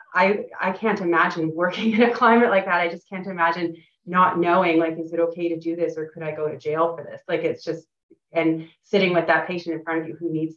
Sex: female